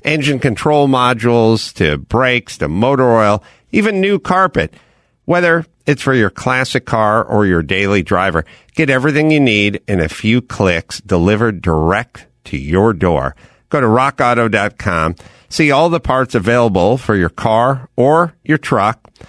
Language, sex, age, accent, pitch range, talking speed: English, male, 50-69, American, 95-140 Hz, 150 wpm